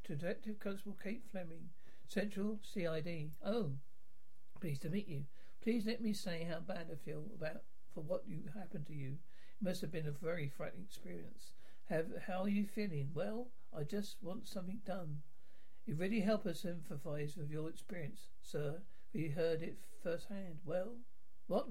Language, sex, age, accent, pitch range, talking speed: English, male, 60-79, British, 160-200 Hz, 170 wpm